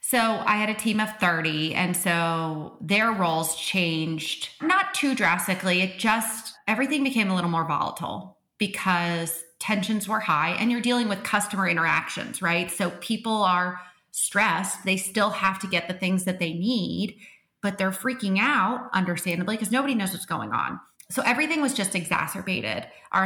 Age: 30-49